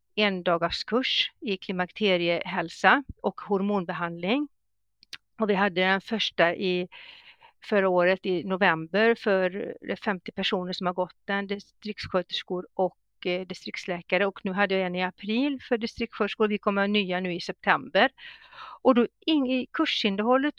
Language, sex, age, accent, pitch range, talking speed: Swedish, female, 50-69, native, 185-235 Hz, 135 wpm